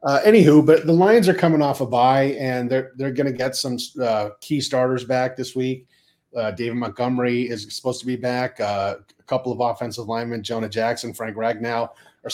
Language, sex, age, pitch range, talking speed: English, male, 30-49, 120-150 Hz, 200 wpm